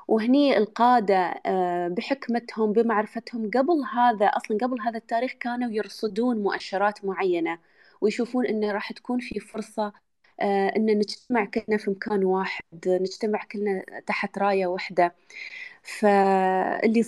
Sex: female